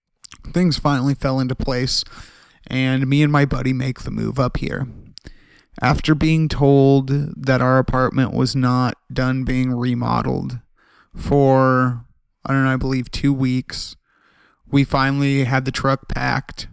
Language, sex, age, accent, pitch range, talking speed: English, male, 30-49, American, 125-140 Hz, 145 wpm